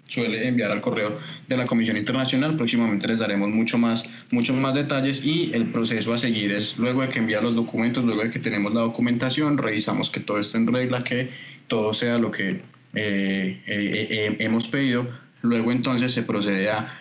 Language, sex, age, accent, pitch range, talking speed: Spanish, male, 20-39, Colombian, 105-120 Hz, 195 wpm